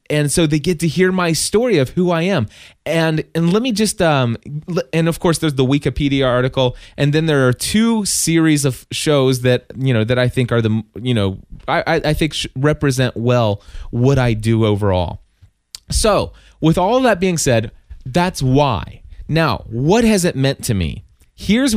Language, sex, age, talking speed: English, male, 20-39, 185 wpm